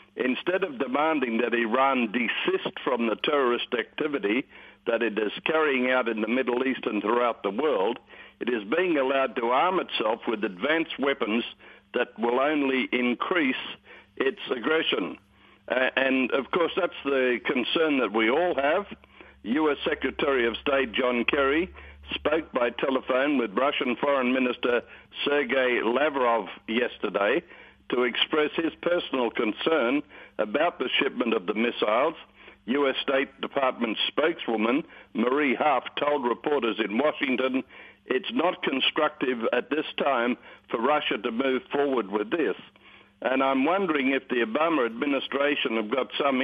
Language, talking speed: English, 140 wpm